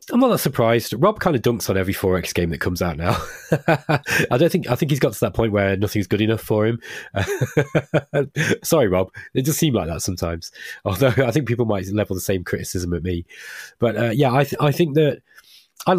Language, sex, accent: English, male, British